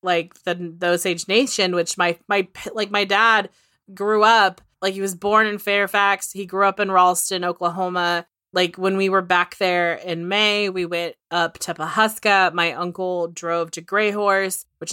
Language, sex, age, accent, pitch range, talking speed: English, female, 20-39, American, 170-205 Hz, 175 wpm